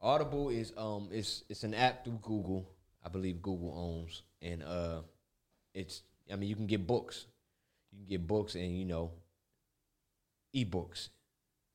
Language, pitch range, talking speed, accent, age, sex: English, 85-105 Hz, 155 wpm, American, 20-39, male